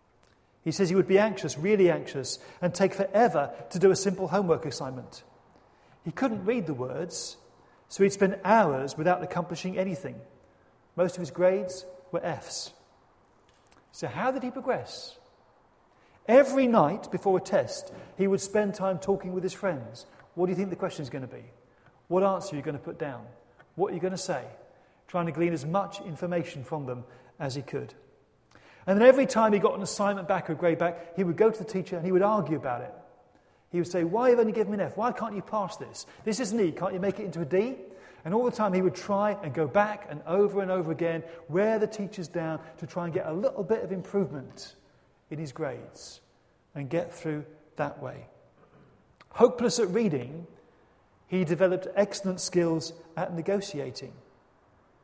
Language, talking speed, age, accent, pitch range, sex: English, 195 wpm, 40-59, British, 160-200 Hz, male